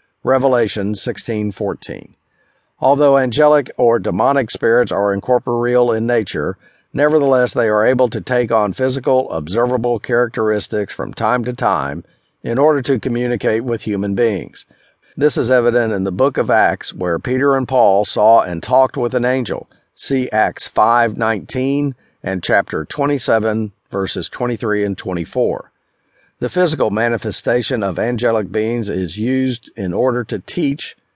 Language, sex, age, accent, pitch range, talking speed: English, male, 50-69, American, 110-130 Hz, 140 wpm